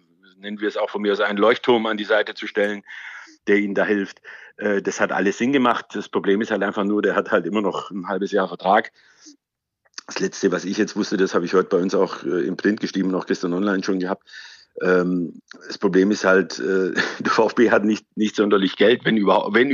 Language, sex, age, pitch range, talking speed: German, male, 50-69, 95-110 Hz, 220 wpm